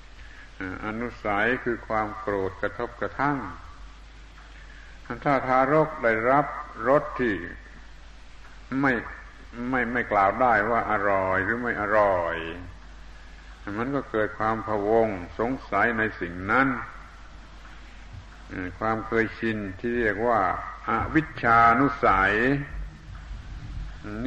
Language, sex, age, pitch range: Thai, male, 70-89, 95-120 Hz